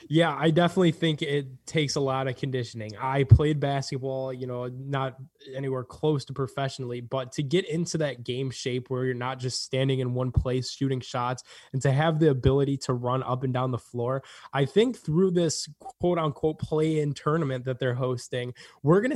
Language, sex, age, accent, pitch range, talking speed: English, male, 20-39, American, 130-155 Hz, 195 wpm